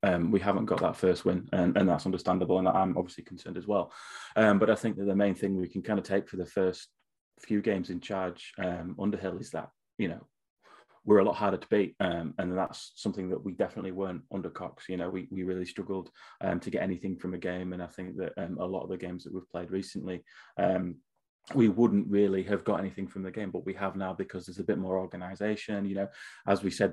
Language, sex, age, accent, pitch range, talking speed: English, male, 20-39, British, 90-105 Hz, 250 wpm